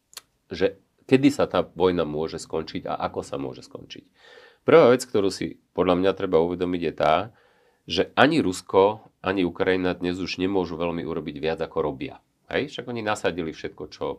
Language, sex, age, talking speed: Slovak, male, 40-59, 175 wpm